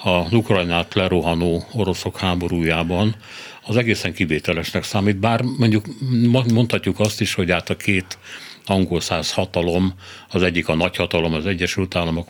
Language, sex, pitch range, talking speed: Hungarian, male, 85-105 Hz, 135 wpm